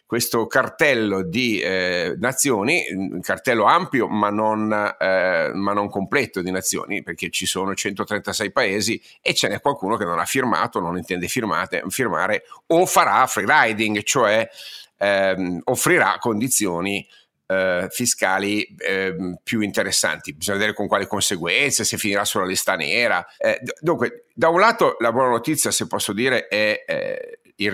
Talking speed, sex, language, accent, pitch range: 145 wpm, male, Italian, native, 100-125 Hz